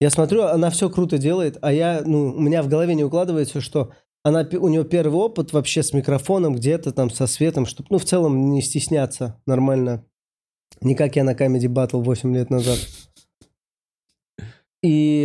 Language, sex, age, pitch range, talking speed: Russian, male, 20-39, 130-160 Hz, 175 wpm